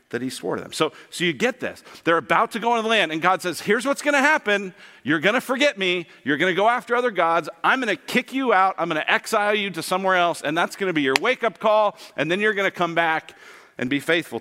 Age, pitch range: 40-59, 120-180 Hz